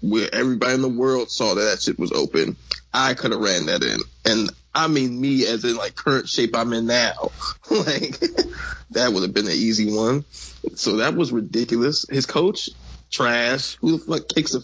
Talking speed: 200 wpm